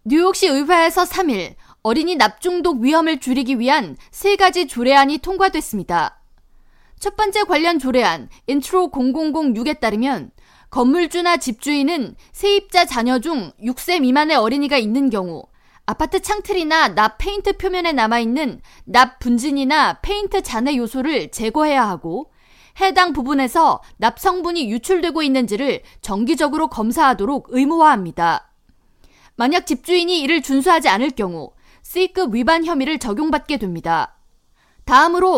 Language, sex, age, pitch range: Korean, female, 20-39, 250-340 Hz